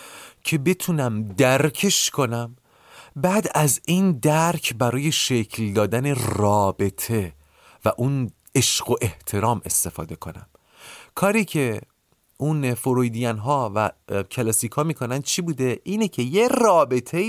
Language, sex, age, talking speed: Persian, male, 40-59, 120 wpm